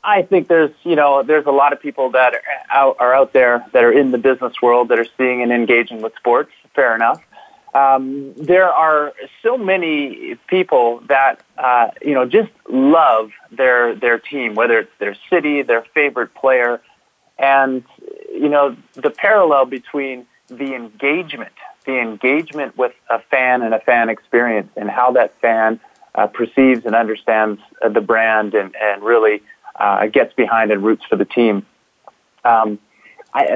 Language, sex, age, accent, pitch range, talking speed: English, male, 30-49, American, 115-145 Hz, 170 wpm